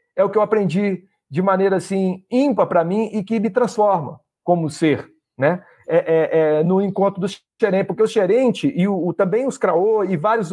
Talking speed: 210 wpm